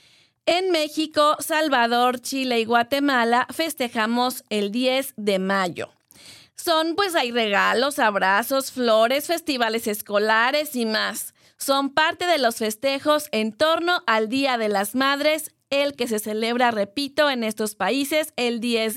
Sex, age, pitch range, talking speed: female, 30-49, 220-285 Hz, 135 wpm